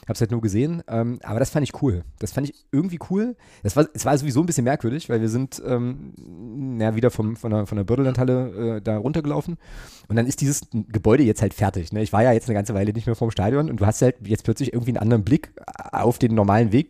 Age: 30-49